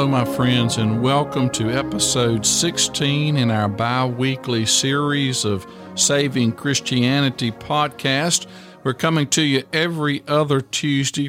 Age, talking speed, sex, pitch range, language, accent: 50-69, 120 wpm, male, 120-140 Hz, English, American